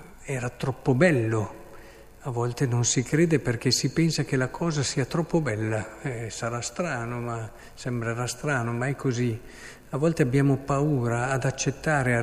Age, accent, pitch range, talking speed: 50-69, native, 120-155 Hz, 160 wpm